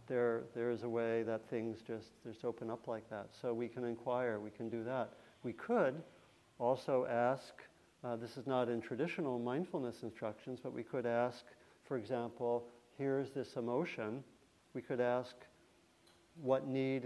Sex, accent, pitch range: male, American, 115-130 Hz